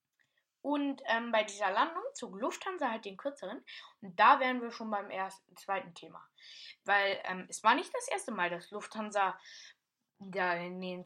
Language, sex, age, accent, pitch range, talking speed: German, female, 10-29, German, 195-285 Hz, 155 wpm